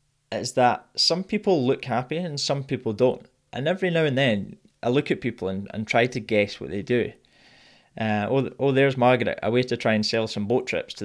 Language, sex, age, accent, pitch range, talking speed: English, male, 20-39, British, 110-140 Hz, 230 wpm